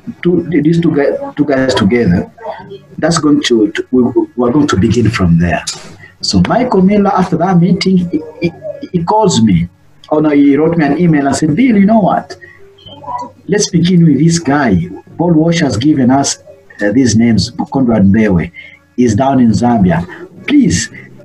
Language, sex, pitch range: English, male, 120-190 Hz